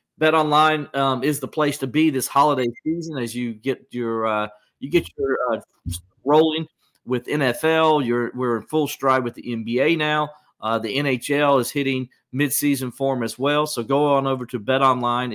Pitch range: 115-150 Hz